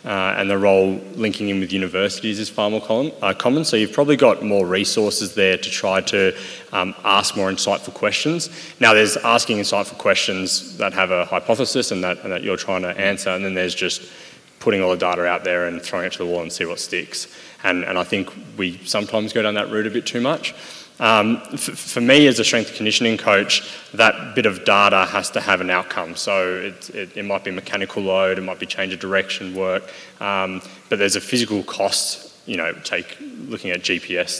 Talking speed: 215 wpm